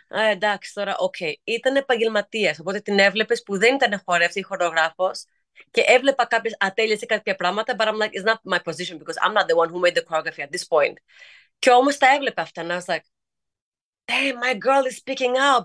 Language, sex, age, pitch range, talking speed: Greek, female, 30-49, 185-250 Hz, 200 wpm